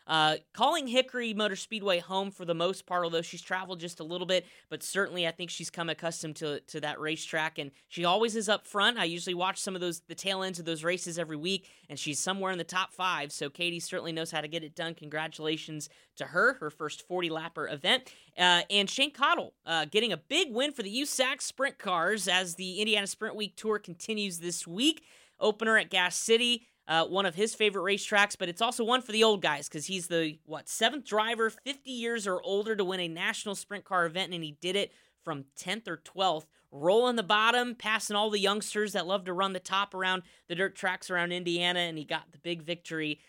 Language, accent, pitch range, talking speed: English, American, 160-205 Hz, 225 wpm